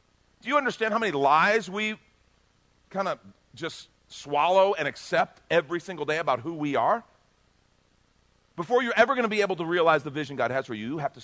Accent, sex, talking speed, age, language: American, male, 205 wpm, 50-69, English